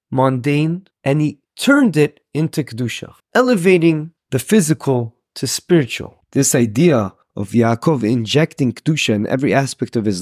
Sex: male